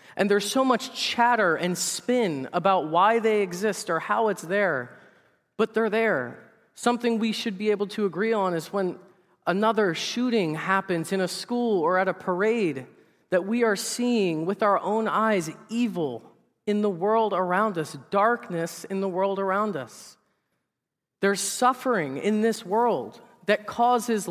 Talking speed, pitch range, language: 160 wpm, 185-230 Hz, English